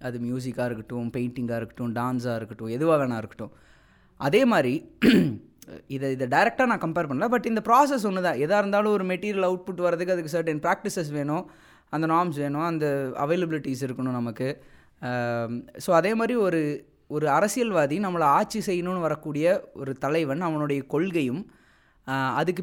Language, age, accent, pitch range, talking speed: Tamil, 20-39, native, 130-190 Hz, 145 wpm